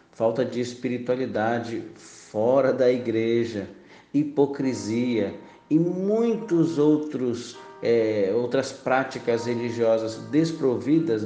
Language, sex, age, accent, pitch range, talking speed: Portuguese, male, 50-69, Brazilian, 110-130 Hz, 70 wpm